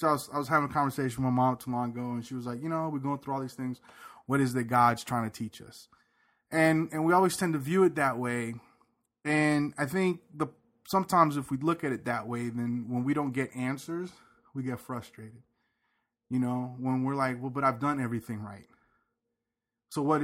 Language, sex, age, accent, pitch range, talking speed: English, male, 20-39, American, 115-135 Hz, 235 wpm